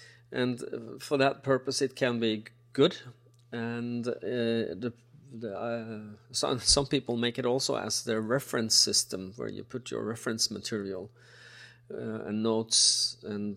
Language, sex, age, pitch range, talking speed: English, male, 40-59, 115-130 Hz, 145 wpm